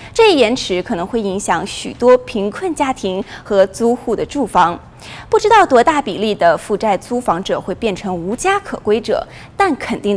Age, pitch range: 20-39, 205-315 Hz